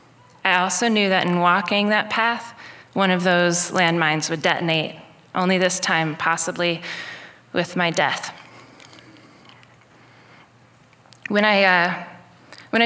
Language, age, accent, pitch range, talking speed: English, 20-39, American, 165-185 Hz, 115 wpm